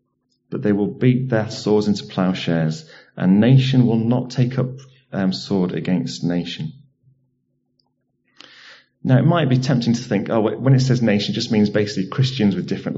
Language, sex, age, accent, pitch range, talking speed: English, male, 30-49, British, 105-135 Hz, 170 wpm